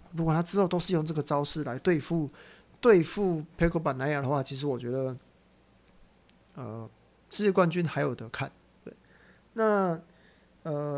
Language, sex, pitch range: Chinese, male, 145-185 Hz